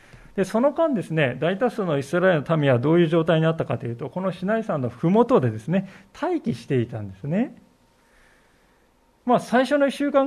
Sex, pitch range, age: male, 135-215 Hz, 40-59